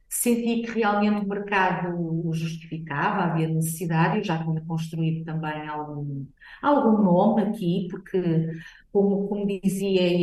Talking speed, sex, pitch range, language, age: 135 wpm, female, 165-195 Hz, Portuguese, 50-69